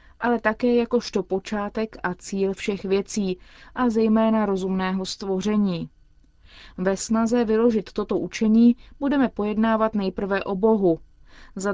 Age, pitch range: 30-49, 185-225 Hz